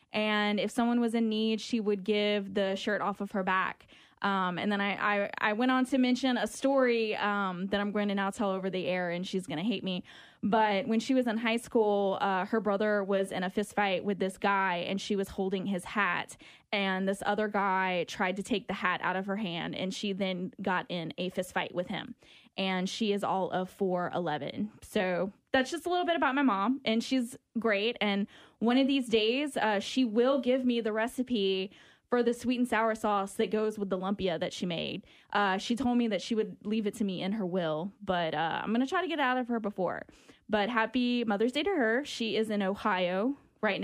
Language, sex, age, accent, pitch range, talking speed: English, female, 20-39, American, 190-230 Hz, 235 wpm